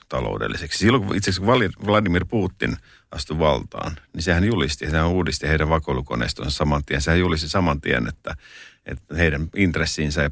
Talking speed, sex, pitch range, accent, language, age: 150 wpm, male, 75-90 Hz, native, Finnish, 50-69